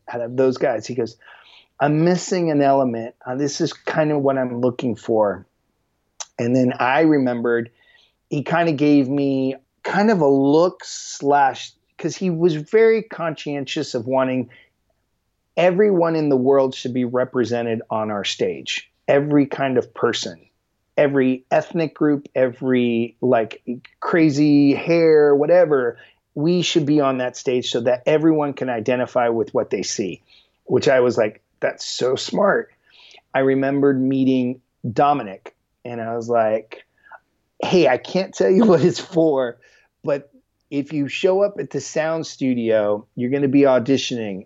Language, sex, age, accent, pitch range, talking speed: English, male, 30-49, American, 125-160 Hz, 155 wpm